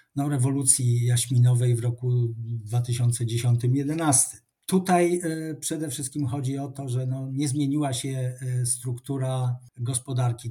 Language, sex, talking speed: Polish, male, 95 wpm